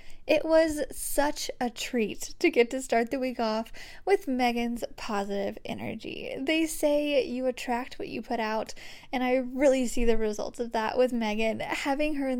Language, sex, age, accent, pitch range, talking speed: English, female, 10-29, American, 230-300 Hz, 180 wpm